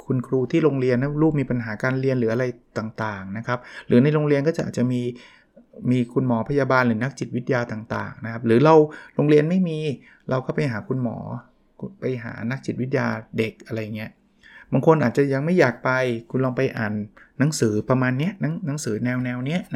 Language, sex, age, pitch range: Thai, male, 20-39, 120-145 Hz